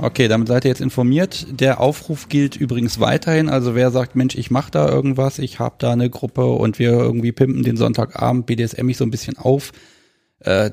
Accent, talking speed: German, 205 wpm